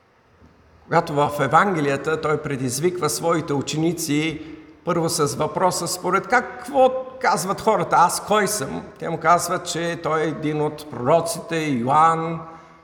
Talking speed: 125 wpm